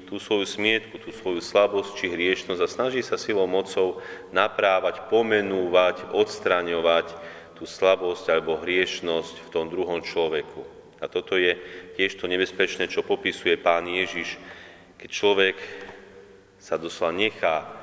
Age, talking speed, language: 30-49, 130 wpm, Slovak